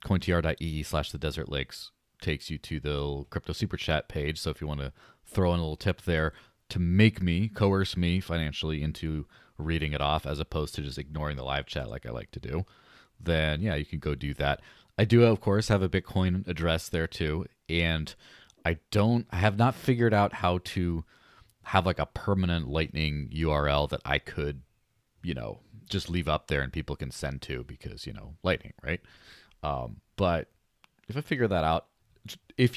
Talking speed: 195 wpm